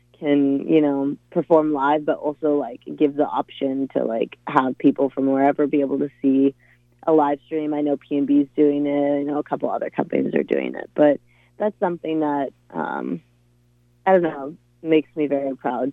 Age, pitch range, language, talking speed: 20-39, 135-155 Hz, English, 190 wpm